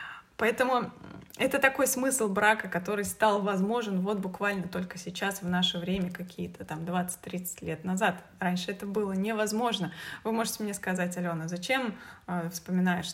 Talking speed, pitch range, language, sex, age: 140 wpm, 185-230 Hz, Russian, female, 20-39